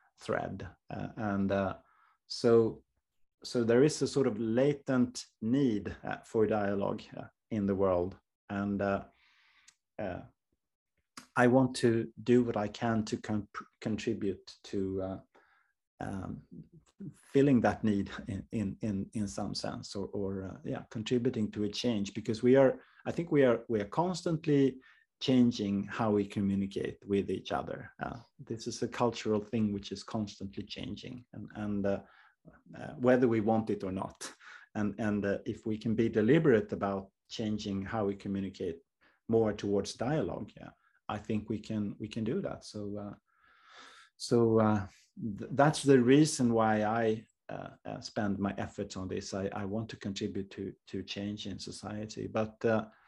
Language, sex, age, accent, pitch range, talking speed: English, male, 30-49, Norwegian, 100-120 Hz, 160 wpm